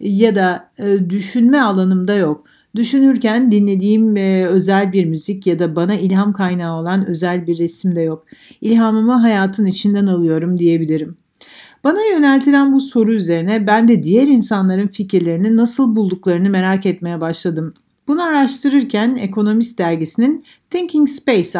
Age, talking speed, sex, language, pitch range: 60-79, 135 wpm, female, Turkish, 185-265 Hz